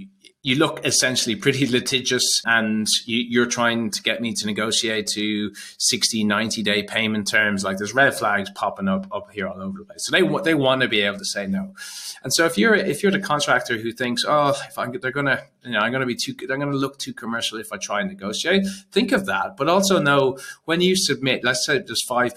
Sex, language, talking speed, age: male, English, 235 wpm, 30-49